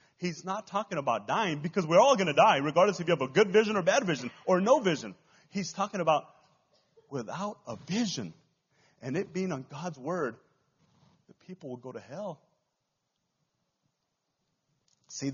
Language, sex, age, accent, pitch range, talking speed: English, male, 30-49, American, 145-200 Hz, 170 wpm